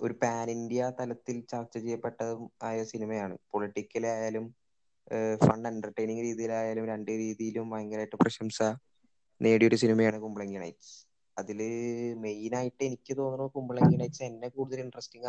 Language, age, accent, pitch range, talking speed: Malayalam, 20-39, native, 110-130 Hz, 120 wpm